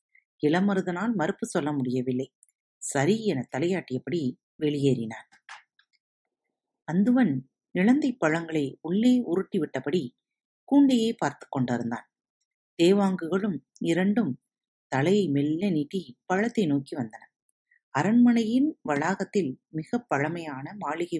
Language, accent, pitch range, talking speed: Tamil, native, 145-220 Hz, 80 wpm